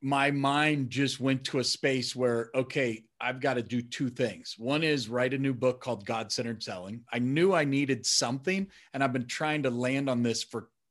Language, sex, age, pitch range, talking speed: English, male, 40-59, 125-150 Hz, 210 wpm